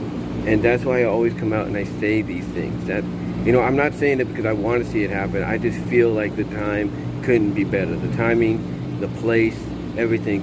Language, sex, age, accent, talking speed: English, male, 50-69, American, 230 wpm